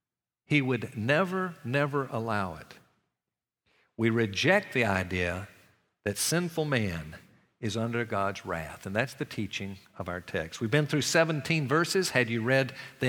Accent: American